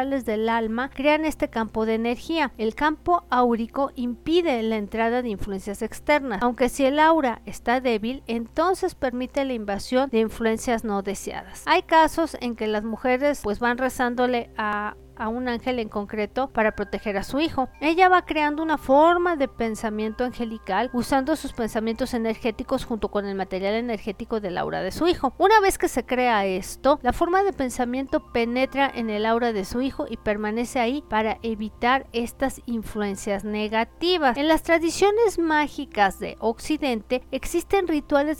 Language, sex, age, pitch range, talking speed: Spanish, female, 40-59, 225-280 Hz, 165 wpm